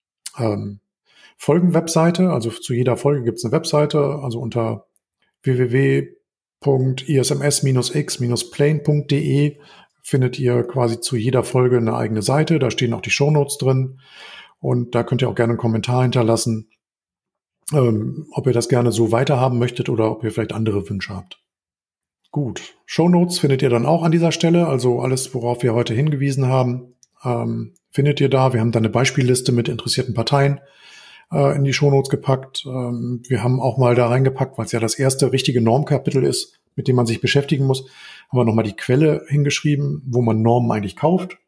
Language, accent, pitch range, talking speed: German, German, 115-140 Hz, 170 wpm